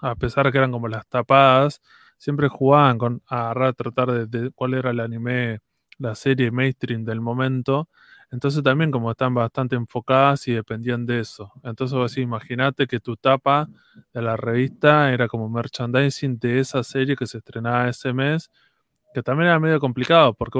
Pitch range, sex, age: 120-135 Hz, male, 20-39